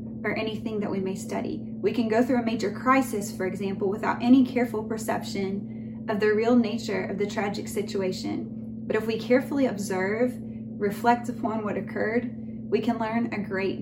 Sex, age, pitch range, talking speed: female, 20-39, 190-230 Hz, 180 wpm